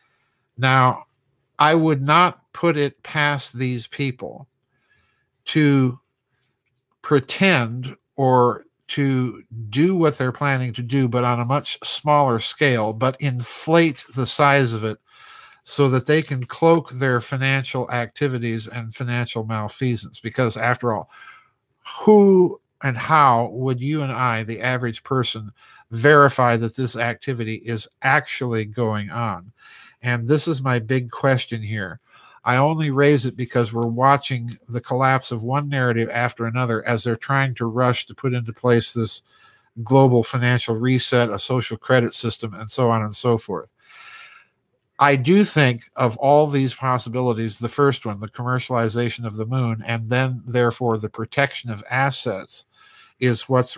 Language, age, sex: English, 50-69, male